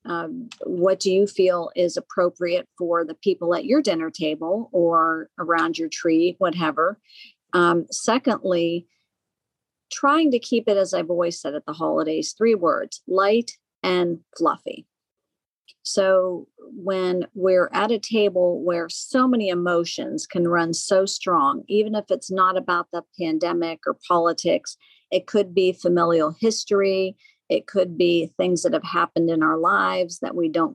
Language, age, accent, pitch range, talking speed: English, 50-69, American, 170-200 Hz, 150 wpm